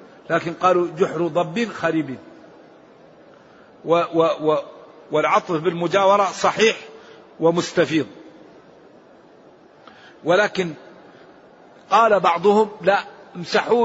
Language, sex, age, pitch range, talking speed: Arabic, male, 50-69, 170-215 Hz, 75 wpm